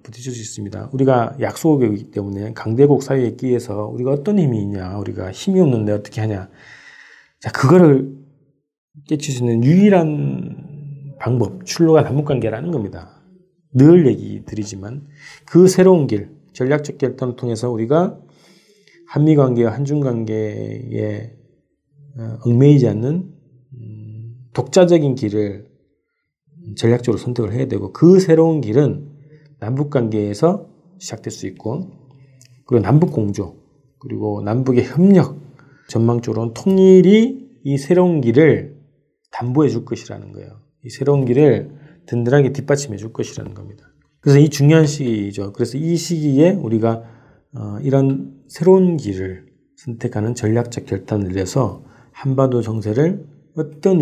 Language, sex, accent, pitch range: Korean, male, native, 110-150 Hz